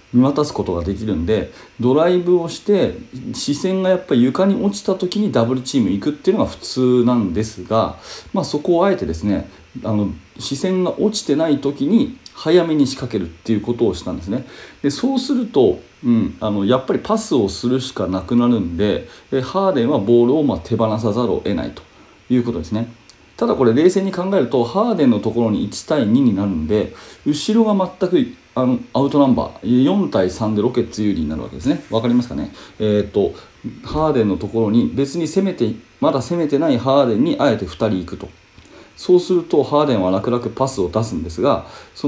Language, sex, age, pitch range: Japanese, male, 40-59, 110-180 Hz